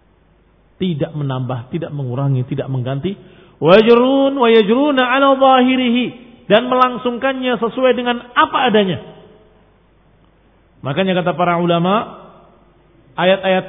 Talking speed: 90 wpm